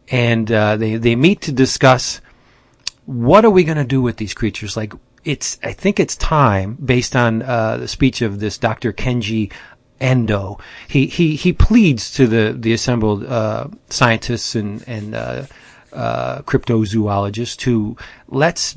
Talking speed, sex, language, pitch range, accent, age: 155 wpm, male, English, 110-130 Hz, American, 40-59